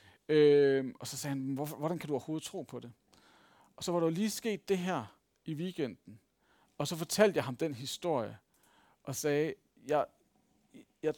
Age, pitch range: 40-59, 125-150 Hz